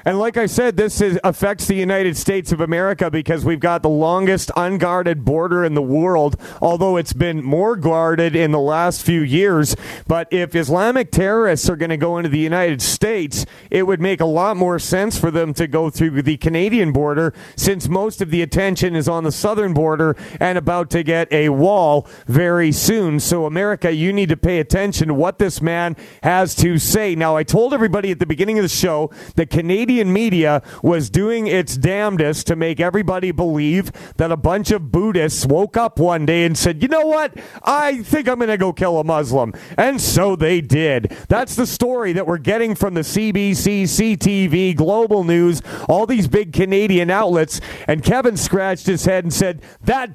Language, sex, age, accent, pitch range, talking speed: English, male, 40-59, American, 160-195 Hz, 195 wpm